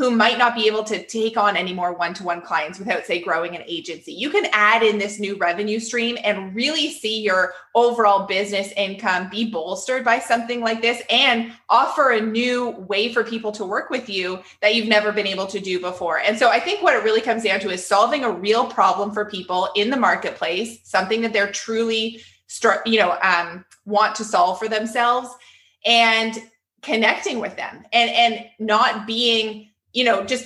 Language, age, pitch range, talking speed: English, 20-39, 190-235 Hz, 195 wpm